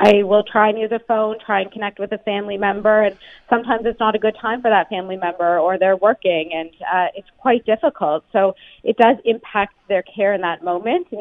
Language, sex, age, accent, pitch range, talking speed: English, female, 20-39, American, 175-205 Hz, 230 wpm